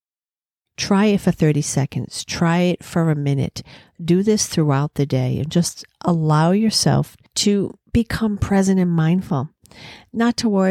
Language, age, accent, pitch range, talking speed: English, 50-69, American, 135-175 Hz, 150 wpm